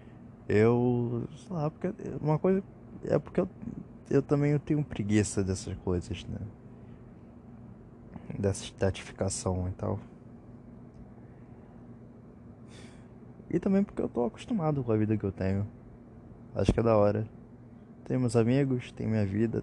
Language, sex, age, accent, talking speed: Portuguese, male, 20-39, Brazilian, 130 wpm